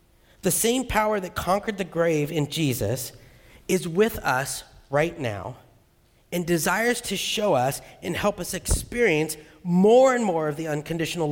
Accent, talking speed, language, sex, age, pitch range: American, 155 wpm, English, male, 40-59, 130-190 Hz